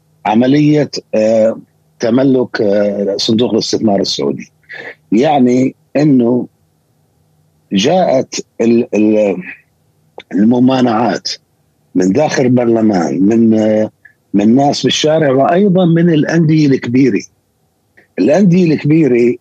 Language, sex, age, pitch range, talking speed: Arabic, male, 50-69, 115-145 Hz, 75 wpm